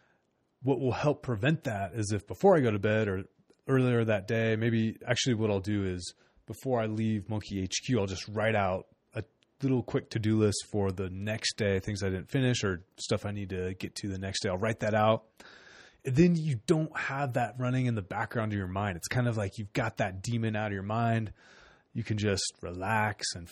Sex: male